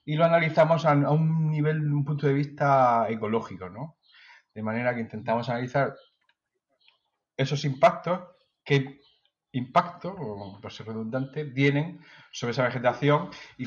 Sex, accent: male, Spanish